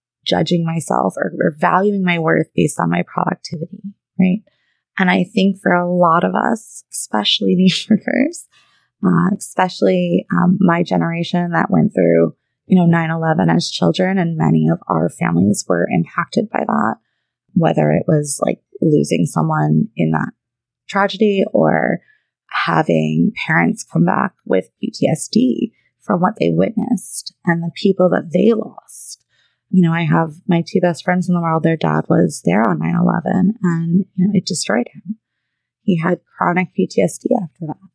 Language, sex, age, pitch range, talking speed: English, female, 20-39, 160-195 Hz, 155 wpm